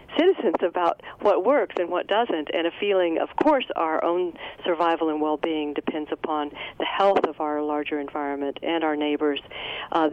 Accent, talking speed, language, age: American, 170 wpm, English, 50-69